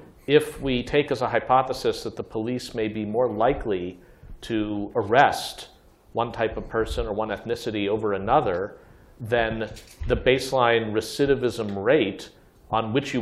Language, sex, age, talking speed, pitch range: English, male, 50-69, 145 wpm, 100-120 Hz